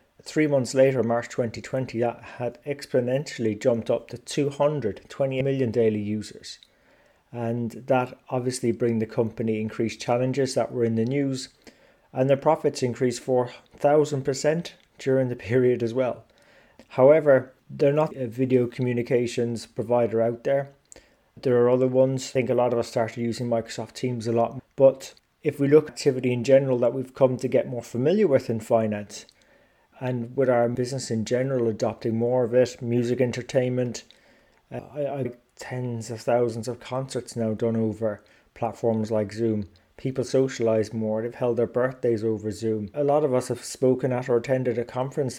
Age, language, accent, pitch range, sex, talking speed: 30-49, English, British, 115-130 Hz, male, 170 wpm